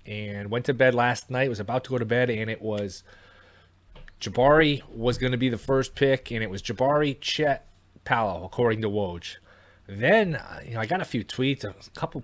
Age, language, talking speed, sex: 30-49, English, 205 wpm, male